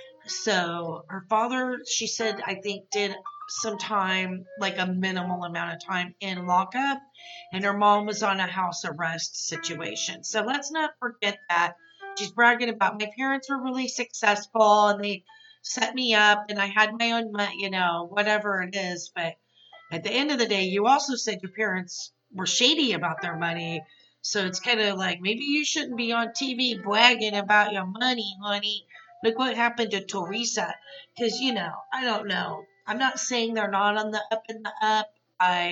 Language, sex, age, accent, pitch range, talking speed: English, female, 40-59, American, 190-240 Hz, 190 wpm